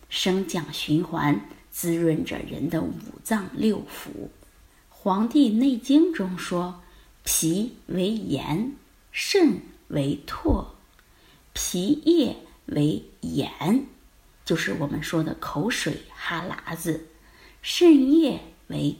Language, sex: Chinese, female